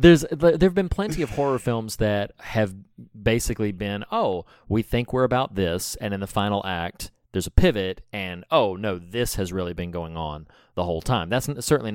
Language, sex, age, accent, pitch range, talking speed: English, male, 30-49, American, 95-115 Hz, 195 wpm